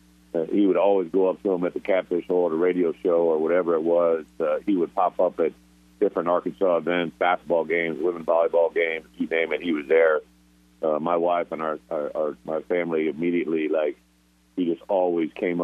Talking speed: 200 wpm